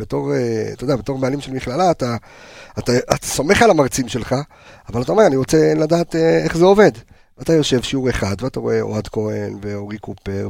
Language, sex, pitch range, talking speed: Hebrew, male, 100-145 Hz, 190 wpm